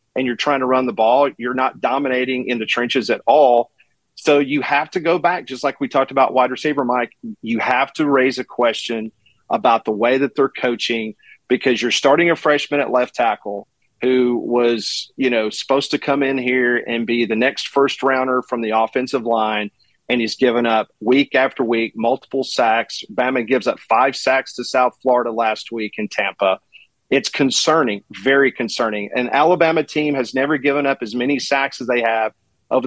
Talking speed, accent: 195 wpm, American